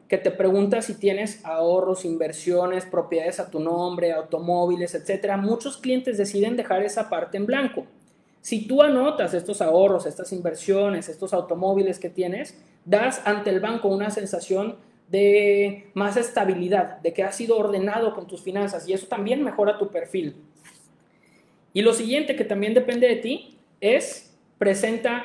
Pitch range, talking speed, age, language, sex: 180-225 Hz, 155 wpm, 30-49, Spanish, male